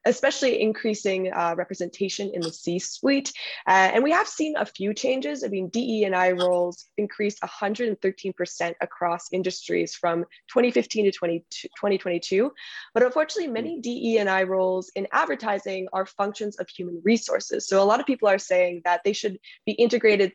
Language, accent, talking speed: English, American, 150 wpm